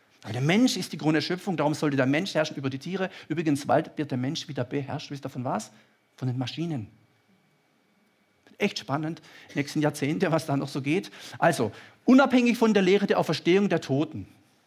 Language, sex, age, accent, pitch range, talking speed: German, male, 50-69, German, 145-215 Hz, 195 wpm